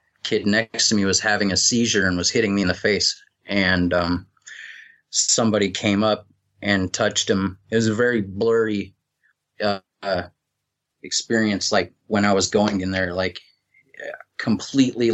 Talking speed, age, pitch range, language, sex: 155 wpm, 20-39, 95-110 Hz, English, male